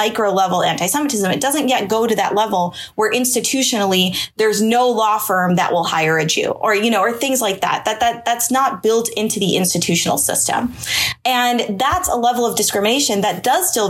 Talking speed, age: 200 wpm, 20-39